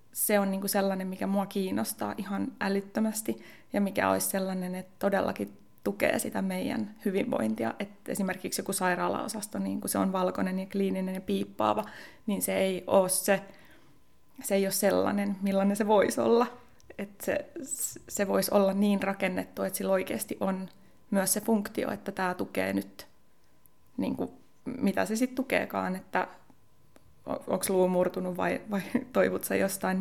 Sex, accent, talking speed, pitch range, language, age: female, native, 150 wpm, 185-205 Hz, Finnish, 20-39